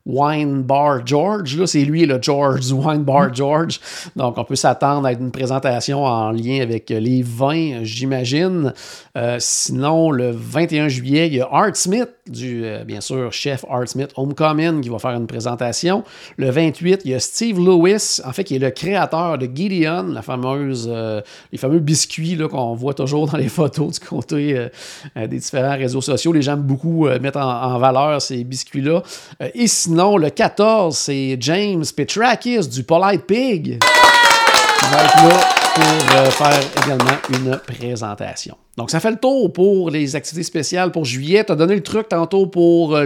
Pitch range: 130-170 Hz